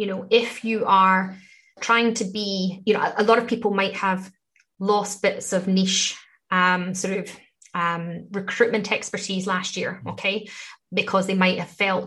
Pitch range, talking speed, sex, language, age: 185-215 Hz, 175 wpm, female, English, 20-39